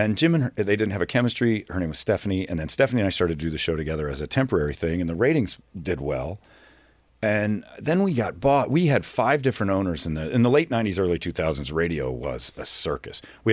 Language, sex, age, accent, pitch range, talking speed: English, male, 40-59, American, 80-105 Hz, 250 wpm